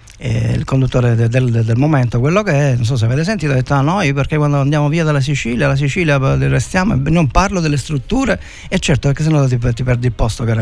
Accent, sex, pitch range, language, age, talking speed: native, male, 115-145 Hz, Italian, 50-69, 250 wpm